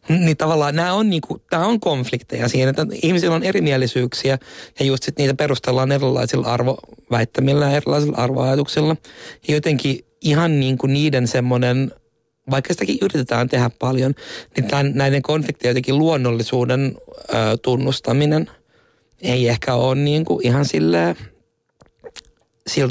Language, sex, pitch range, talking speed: Finnish, male, 125-145 Hz, 130 wpm